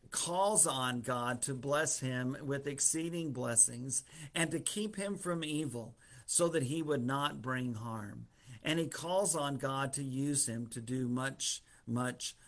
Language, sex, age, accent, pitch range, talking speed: English, male, 50-69, American, 125-155 Hz, 165 wpm